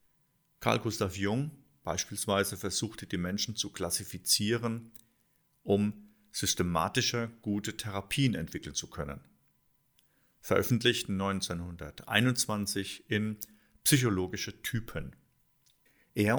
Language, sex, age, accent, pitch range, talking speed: German, male, 50-69, German, 100-120 Hz, 80 wpm